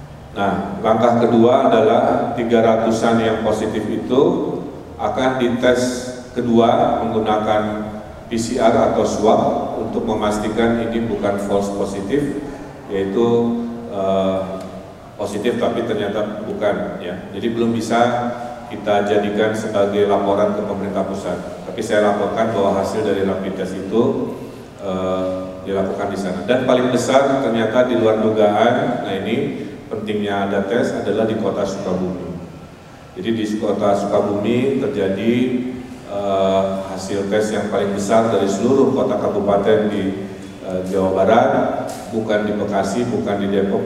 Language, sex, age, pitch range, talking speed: Indonesian, male, 40-59, 95-115 Hz, 125 wpm